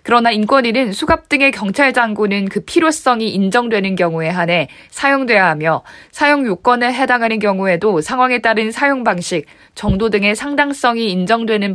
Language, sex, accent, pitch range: Korean, female, native, 190-250 Hz